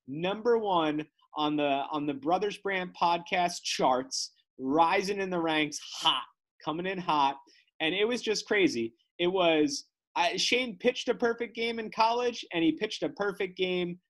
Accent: American